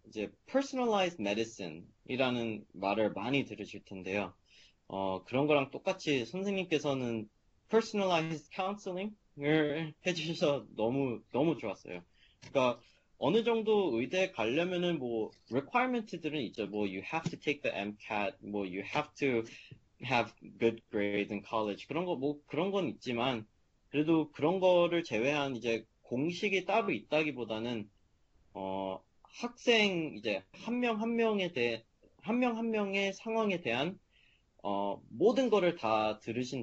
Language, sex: Korean, male